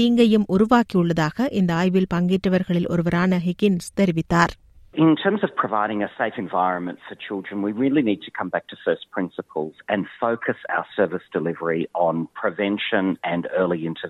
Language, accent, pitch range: Tamil, native, 165-205 Hz